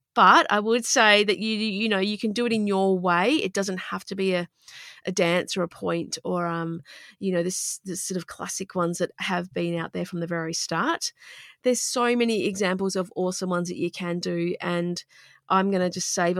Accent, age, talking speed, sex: Australian, 30-49, 230 wpm, female